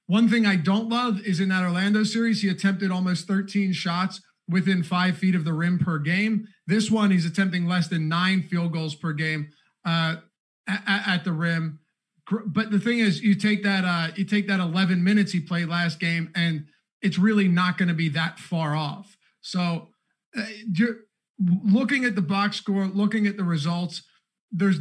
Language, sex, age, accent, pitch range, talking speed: English, male, 30-49, American, 175-205 Hz, 185 wpm